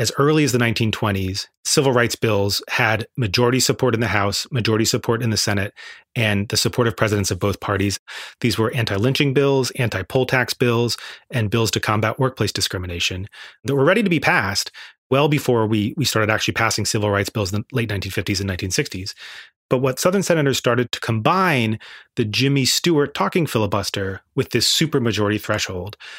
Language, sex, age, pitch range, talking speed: English, male, 30-49, 105-130 Hz, 180 wpm